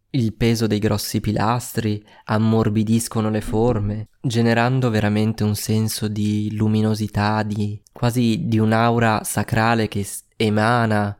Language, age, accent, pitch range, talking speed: Italian, 20-39, native, 105-115 Hz, 115 wpm